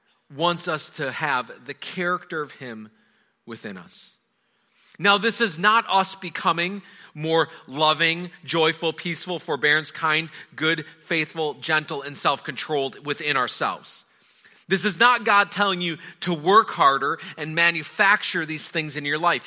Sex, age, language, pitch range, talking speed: male, 40-59, English, 155-205 Hz, 140 wpm